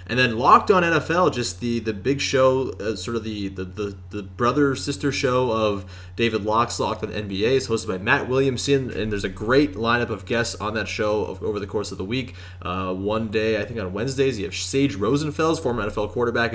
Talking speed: 225 wpm